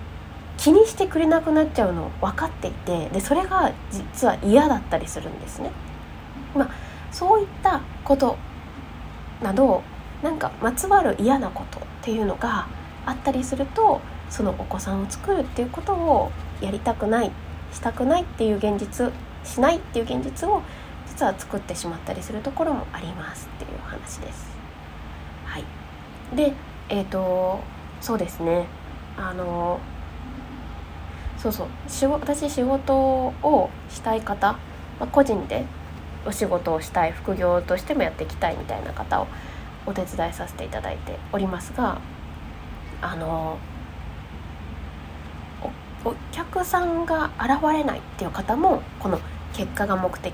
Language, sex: Japanese, female